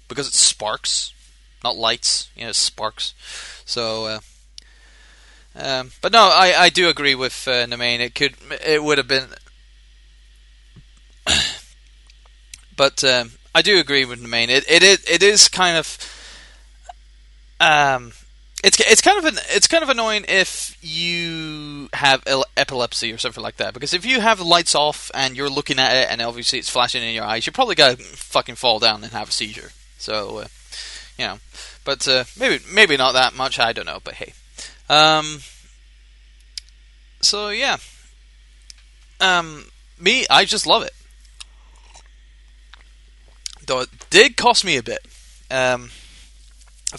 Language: English